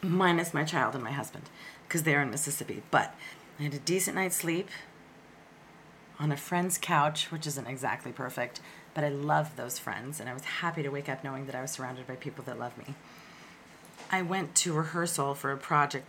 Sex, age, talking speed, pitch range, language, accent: female, 30-49, 205 wpm, 145-165 Hz, English, American